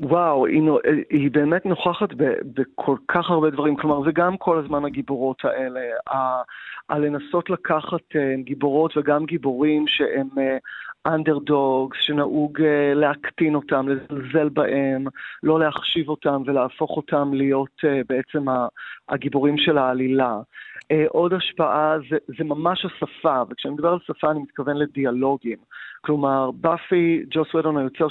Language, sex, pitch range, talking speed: Hebrew, male, 140-160 Hz, 120 wpm